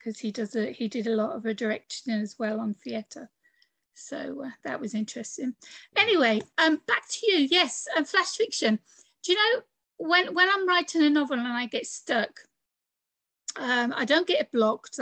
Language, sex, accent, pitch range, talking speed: English, female, British, 230-305 Hz, 180 wpm